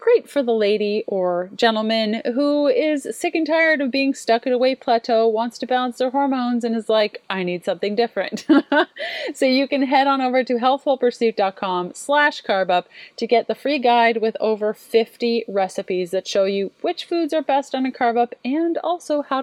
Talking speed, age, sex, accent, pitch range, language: 195 wpm, 30-49, female, American, 200-275 Hz, English